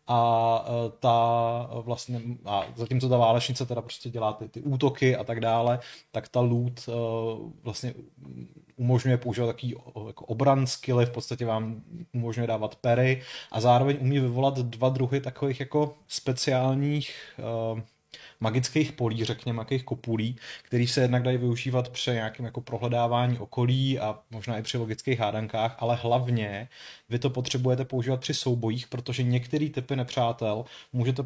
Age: 30-49